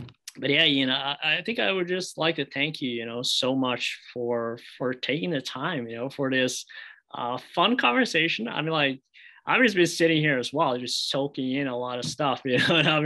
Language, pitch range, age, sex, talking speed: English, 130-155 Hz, 20-39, male, 230 wpm